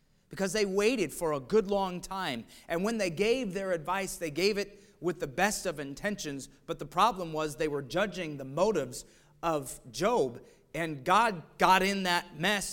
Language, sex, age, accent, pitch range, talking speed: English, male, 40-59, American, 165-225 Hz, 185 wpm